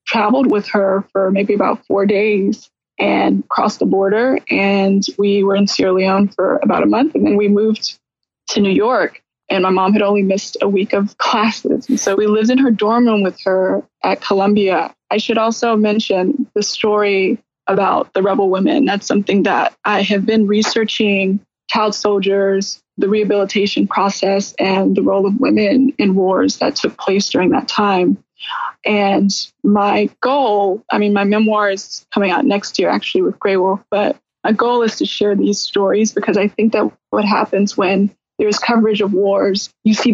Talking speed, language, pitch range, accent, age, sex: 185 wpm, English, 195-225 Hz, American, 20-39, female